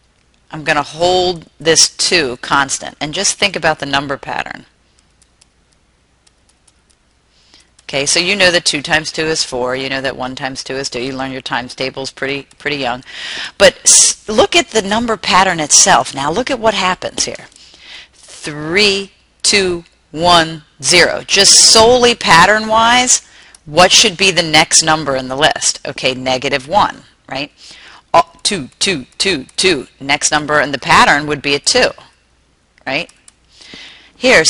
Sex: female